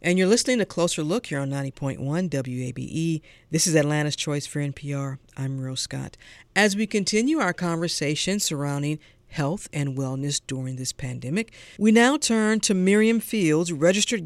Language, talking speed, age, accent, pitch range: English, 160 wpm, 50-69, American, 140-215 Hz